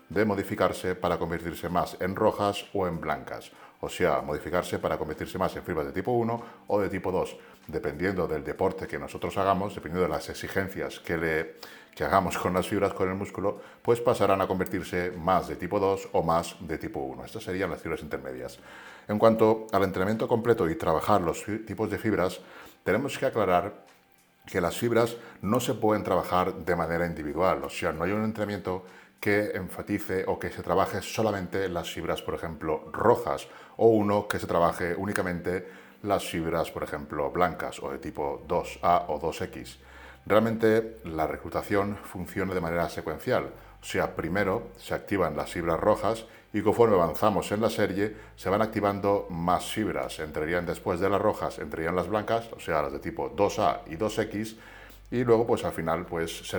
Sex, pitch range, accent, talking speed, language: male, 85-110 Hz, Spanish, 180 wpm, Spanish